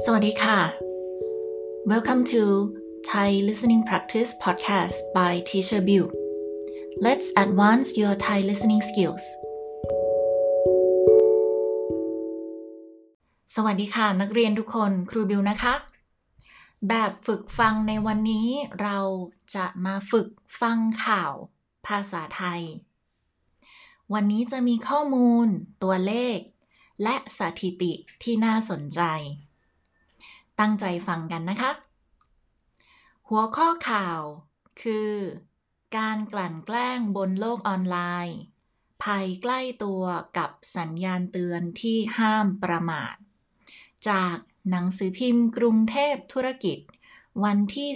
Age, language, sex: 20-39, English, female